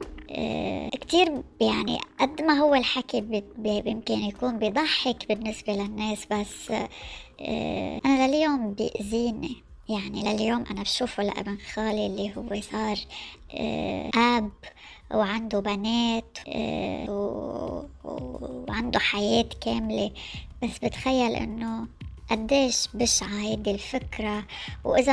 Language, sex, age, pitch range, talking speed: Arabic, male, 20-39, 205-245 Hz, 90 wpm